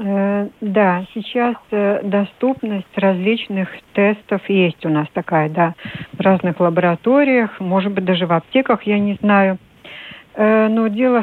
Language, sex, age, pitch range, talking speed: Russian, female, 60-79, 185-225 Hz, 125 wpm